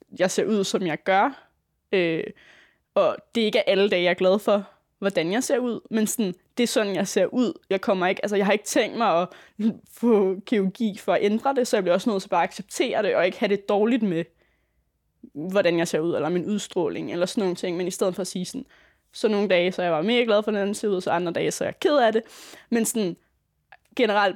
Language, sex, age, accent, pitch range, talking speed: Danish, female, 20-39, native, 180-220 Hz, 255 wpm